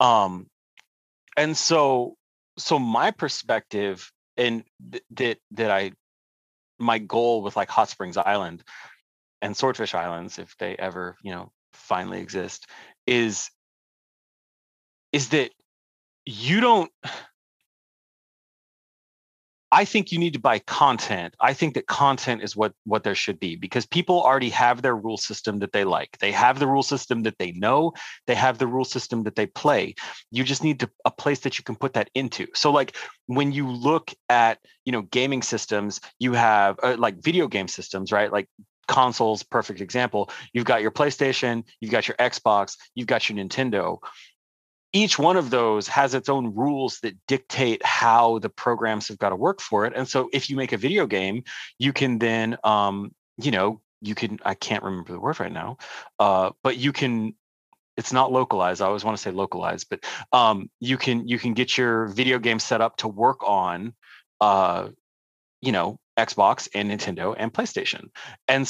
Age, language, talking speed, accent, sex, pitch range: 30-49, English, 175 wpm, American, male, 105-130 Hz